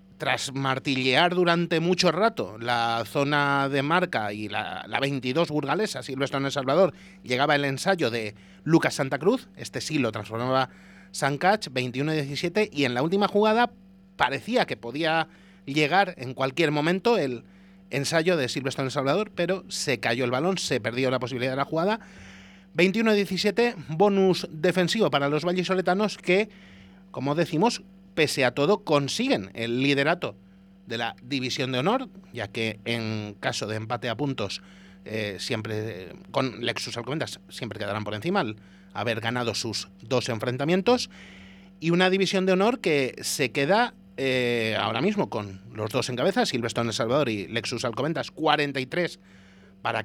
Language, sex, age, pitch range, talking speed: Spanish, male, 30-49, 115-180 Hz, 155 wpm